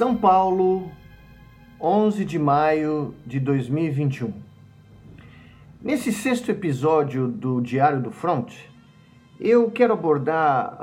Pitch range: 130-170 Hz